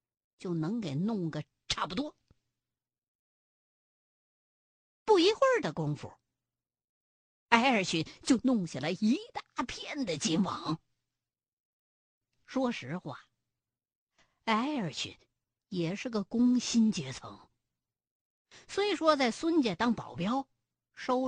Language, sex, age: Chinese, female, 50-69